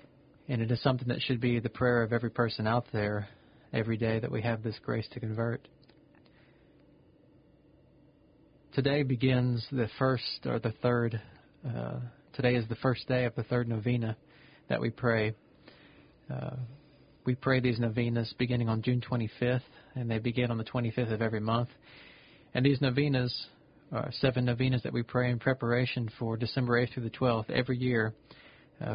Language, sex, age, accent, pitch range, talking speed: English, male, 40-59, American, 115-135 Hz, 170 wpm